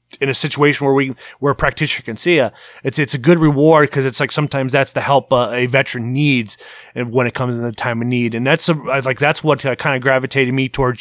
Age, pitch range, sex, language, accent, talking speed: 30-49, 125-150 Hz, male, English, American, 265 wpm